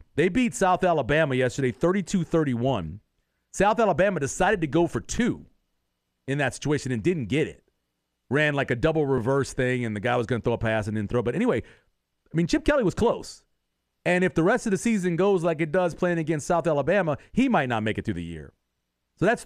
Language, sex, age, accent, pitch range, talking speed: English, male, 40-59, American, 115-180 Hz, 220 wpm